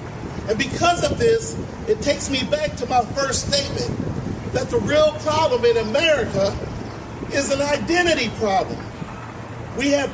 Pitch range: 245-315 Hz